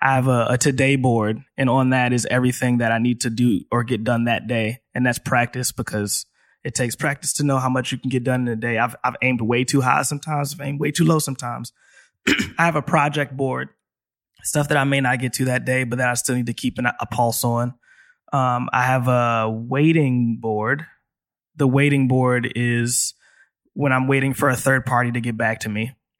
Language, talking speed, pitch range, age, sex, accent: English, 225 wpm, 115-135 Hz, 20-39, male, American